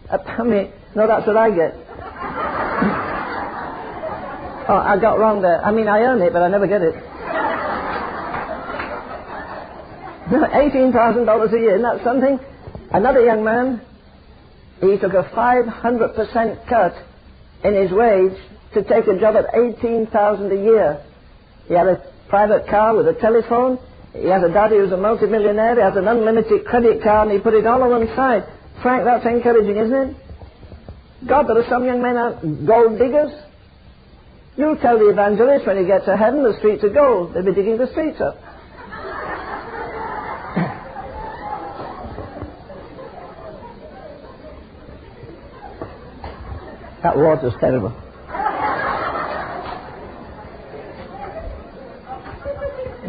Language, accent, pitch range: English, British, 200-240 Hz